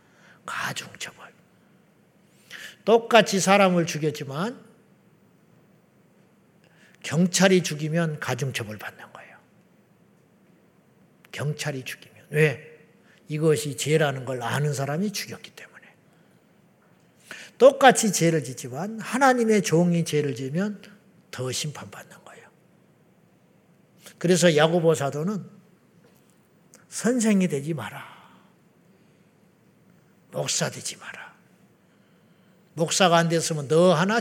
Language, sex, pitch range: Korean, male, 160-215 Hz